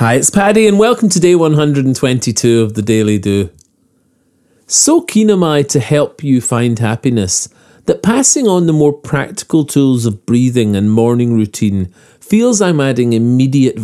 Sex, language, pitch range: male, English, 115-165 Hz